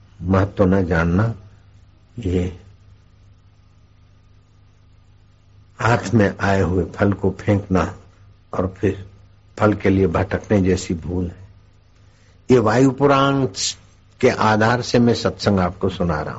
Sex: male